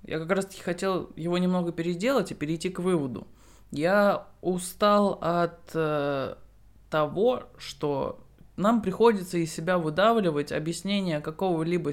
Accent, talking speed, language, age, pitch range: native, 120 wpm, Russian, 20-39, 140-180 Hz